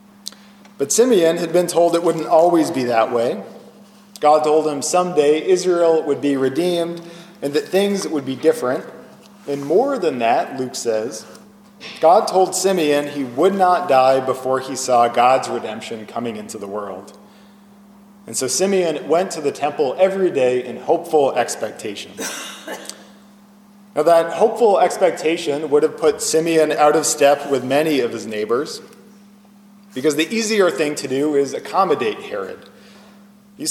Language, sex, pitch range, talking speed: English, male, 140-205 Hz, 150 wpm